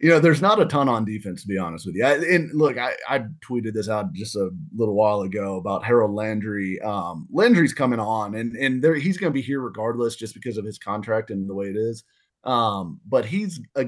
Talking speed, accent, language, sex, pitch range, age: 240 wpm, American, English, male, 105-135 Hz, 30-49